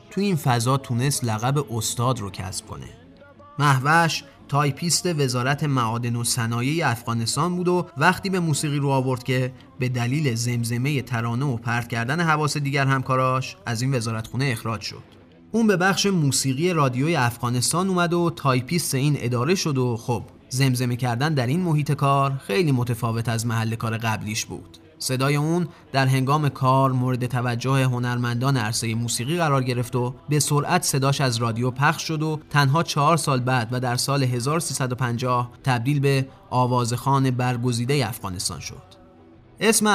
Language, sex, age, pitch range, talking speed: Persian, male, 30-49, 120-155 Hz, 155 wpm